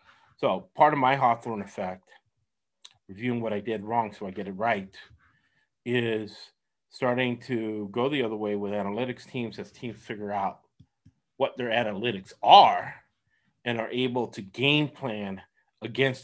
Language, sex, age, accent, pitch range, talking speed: English, male, 30-49, American, 110-130 Hz, 150 wpm